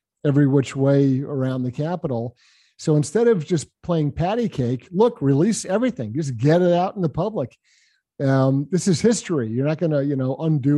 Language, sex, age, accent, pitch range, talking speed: English, male, 50-69, American, 130-150 Hz, 185 wpm